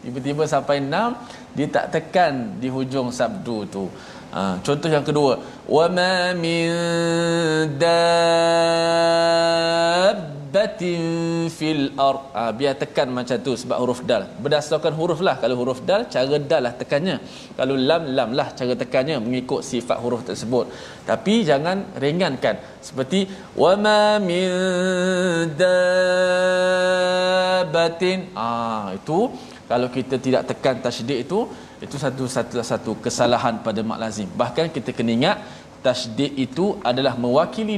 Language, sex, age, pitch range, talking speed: Malayalam, male, 20-39, 125-170 Hz, 120 wpm